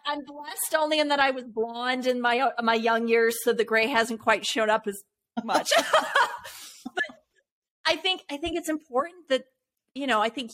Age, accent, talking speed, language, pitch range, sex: 30-49, American, 195 wpm, English, 200-255 Hz, female